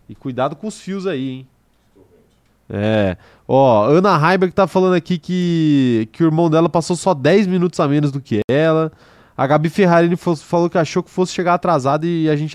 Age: 20-39